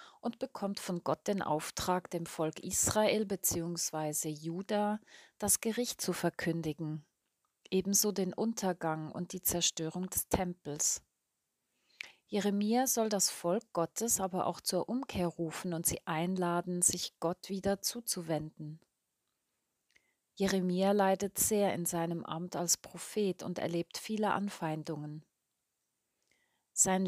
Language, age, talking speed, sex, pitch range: German, 30-49, 115 wpm, female, 165-195 Hz